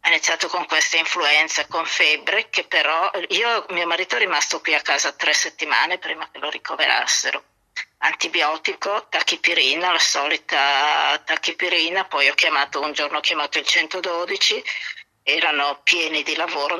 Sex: female